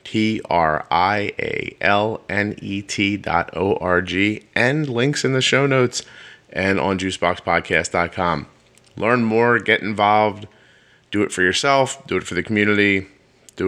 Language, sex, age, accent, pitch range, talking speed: English, male, 30-49, American, 90-135 Hz, 115 wpm